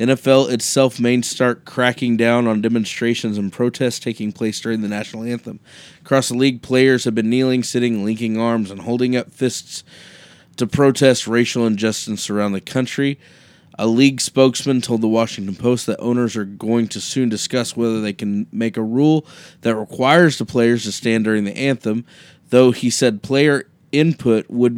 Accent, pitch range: American, 110-130 Hz